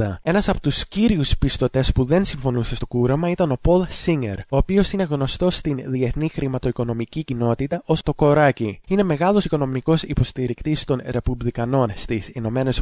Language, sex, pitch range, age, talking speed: English, male, 125-170 Hz, 20-39, 155 wpm